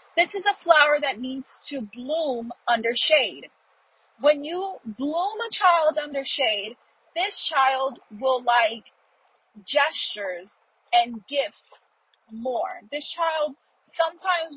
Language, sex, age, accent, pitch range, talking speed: English, female, 30-49, American, 255-335 Hz, 115 wpm